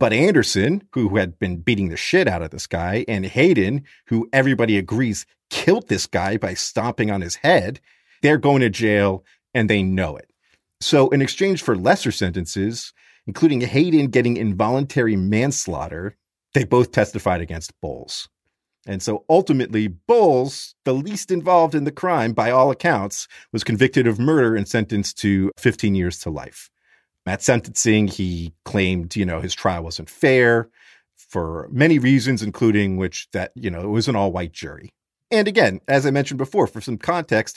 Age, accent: 40-59, American